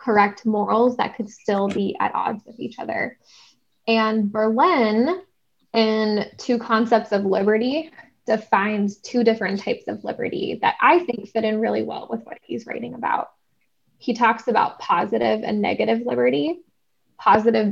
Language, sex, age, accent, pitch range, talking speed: English, female, 10-29, American, 210-235 Hz, 150 wpm